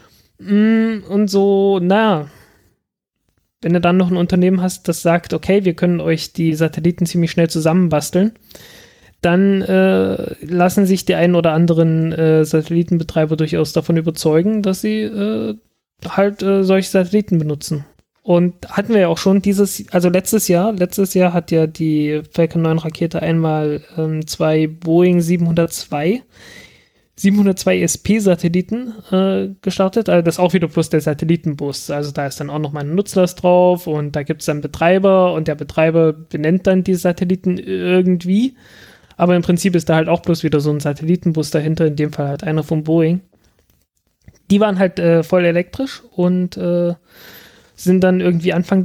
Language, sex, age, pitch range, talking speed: German, male, 20-39, 160-190 Hz, 165 wpm